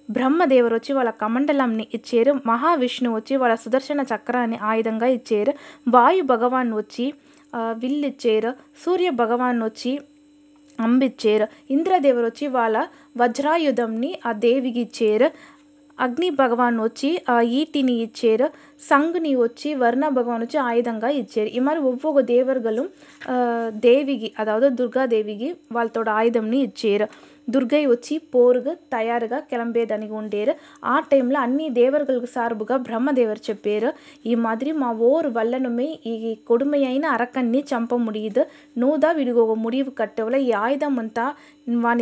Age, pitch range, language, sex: 20-39, 230-285 Hz, Telugu, female